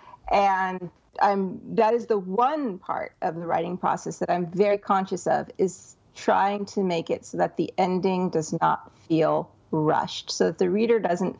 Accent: American